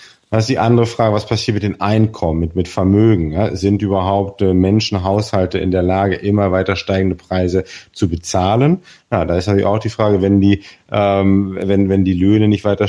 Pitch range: 90-110 Hz